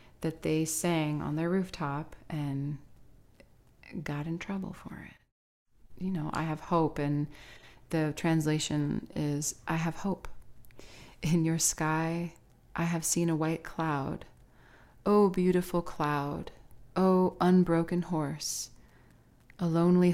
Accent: American